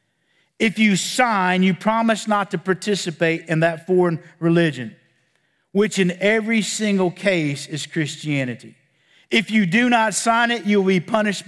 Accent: American